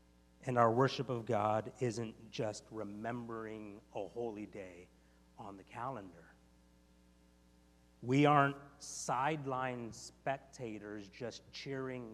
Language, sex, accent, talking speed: English, male, American, 100 wpm